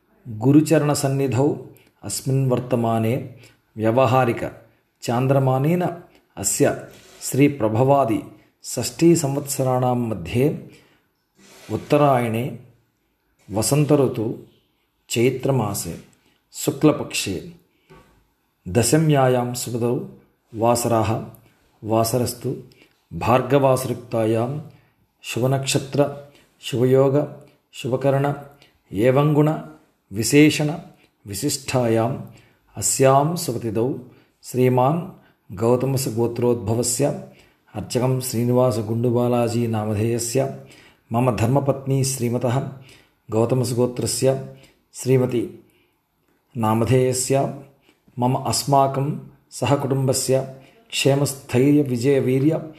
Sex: male